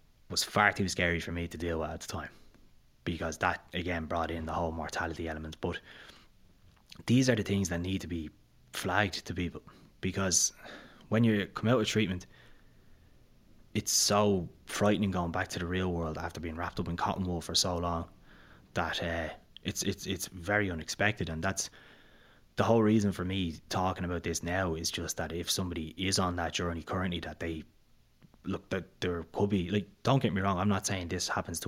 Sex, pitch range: male, 85-100 Hz